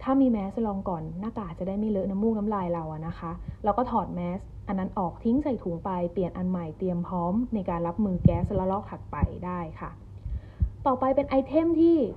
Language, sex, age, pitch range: Thai, female, 20-39, 180-240 Hz